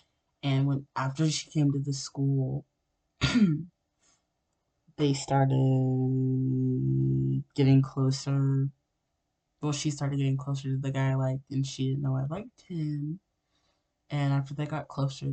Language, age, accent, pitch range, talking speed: English, 20-39, American, 130-140 Hz, 135 wpm